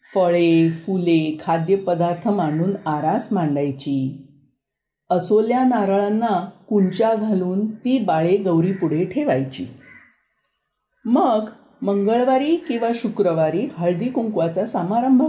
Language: Marathi